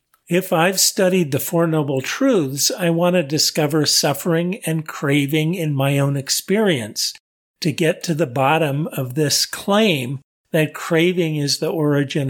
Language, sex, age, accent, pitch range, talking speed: English, male, 50-69, American, 140-170 Hz, 150 wpm